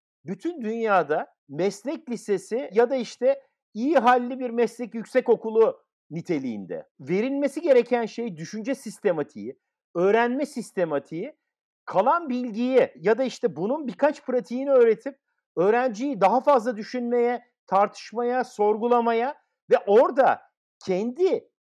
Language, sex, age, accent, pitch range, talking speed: Turkish, male, 50-69, native, 190-255 Hz, 110 wpm